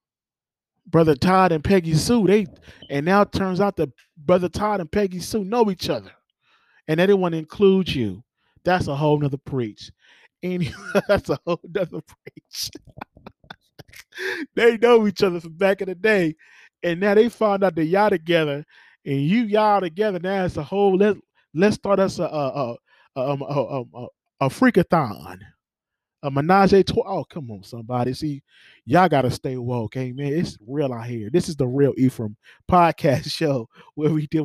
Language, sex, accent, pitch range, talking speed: English, male, American, 145-195 Hz, 170 wpm